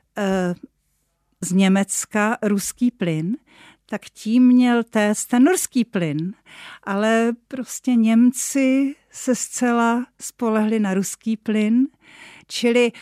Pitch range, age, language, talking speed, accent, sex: 180-225 Hz, 50-69, Czech, 95 wpm, native, female